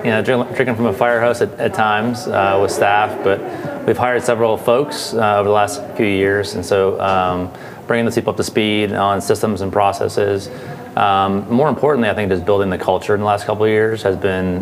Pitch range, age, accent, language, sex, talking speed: 95-110 Hz, 30-49, American, English, male, 220 wpm